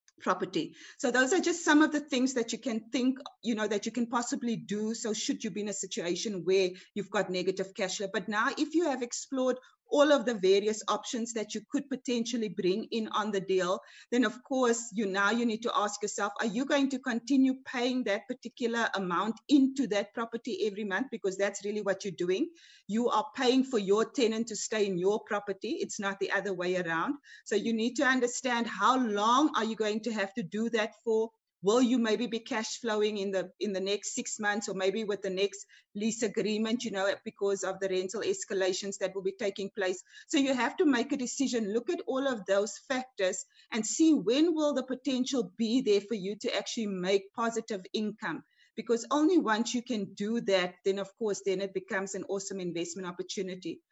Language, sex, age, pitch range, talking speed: English, female, 30-49, 200-250 Hz, 215 wpm